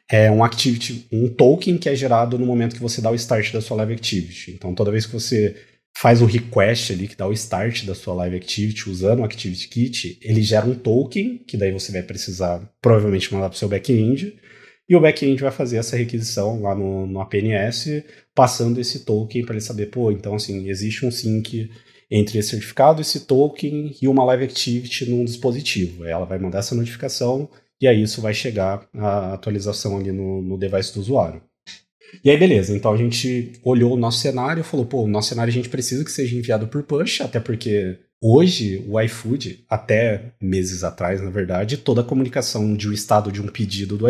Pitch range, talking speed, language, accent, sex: 100-125 Hz, 210 wpm, Portuguese, Brazilian, male